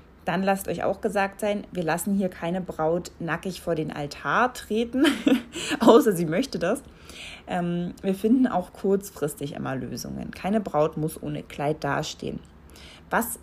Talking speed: 150 wpm